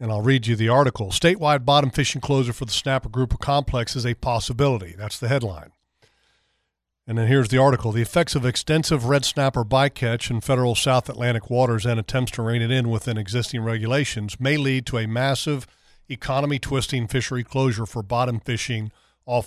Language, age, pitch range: English, 40-59, 115-140 Hz